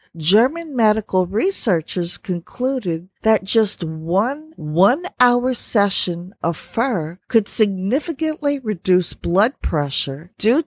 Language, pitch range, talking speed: English, 175-235 Hz, 100 wpm